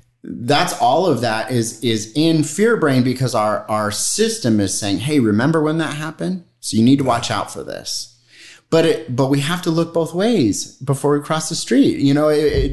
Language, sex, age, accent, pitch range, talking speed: English, male, 30-49, American, 105-150 Hz, 210 wpm